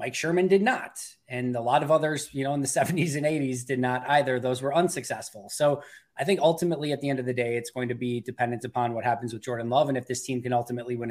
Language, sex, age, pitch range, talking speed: English, male, 20-39, 125-150 Hz, 270 wpm